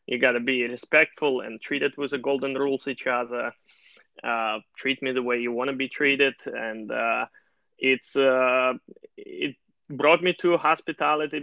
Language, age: English, 20-39